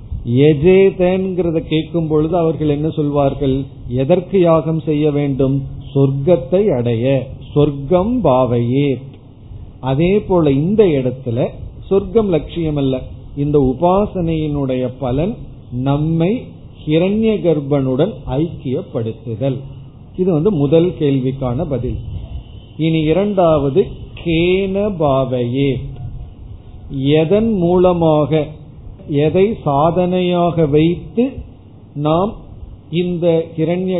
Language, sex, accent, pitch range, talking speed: Tamil, male, native, 130-170 Hz, 65 wpm